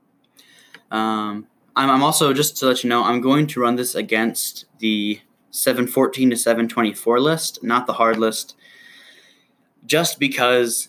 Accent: American